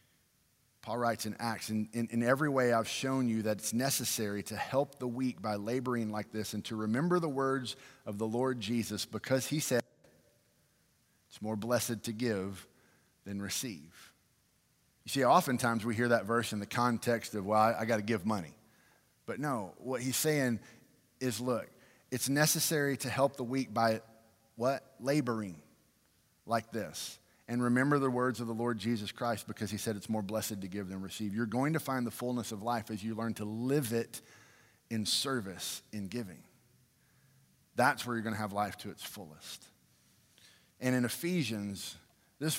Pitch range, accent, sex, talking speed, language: 110-130 Hz, American, male, 180 wpm, English